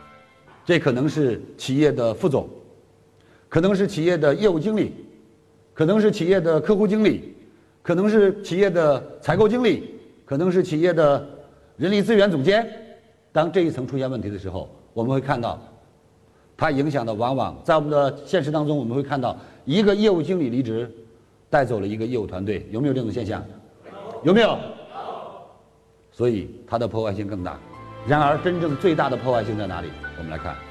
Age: 50-69